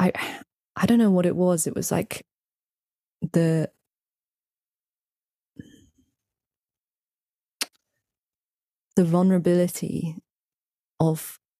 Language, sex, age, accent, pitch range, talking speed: English, female, 20-39, British, 155-185 Hz, 70 wpm